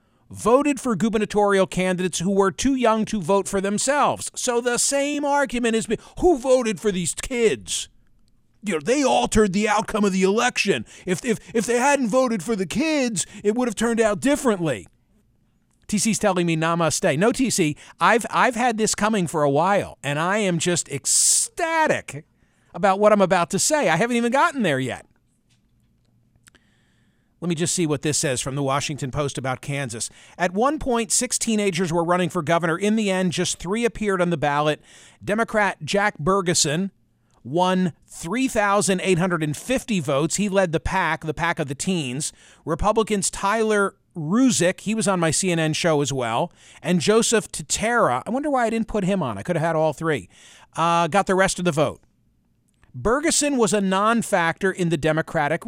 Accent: American